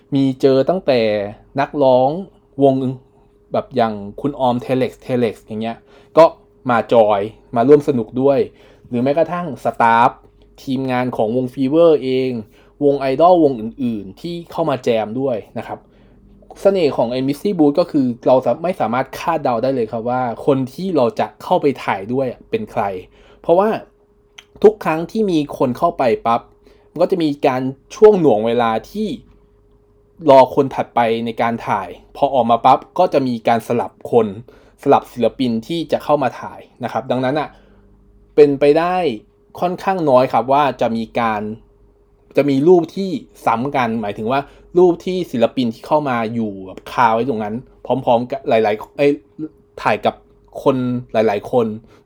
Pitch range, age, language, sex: 115-155 Hz, 20-39, Thai, male